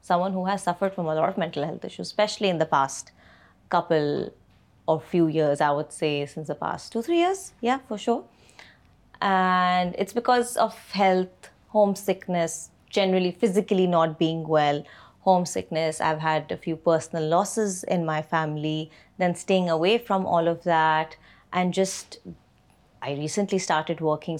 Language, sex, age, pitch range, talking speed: Urdu, female, 30-49, 160-195 Hz, 160 wpm